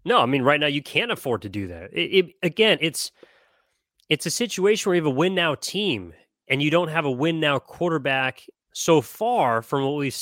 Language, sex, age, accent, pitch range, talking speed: English, male, 30-49, American, 115-155 Hz, 210 wpm